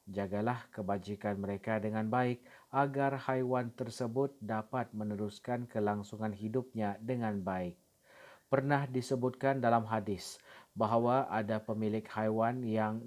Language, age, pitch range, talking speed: Malay, 40-59, 105-125 Hz, 105 wpm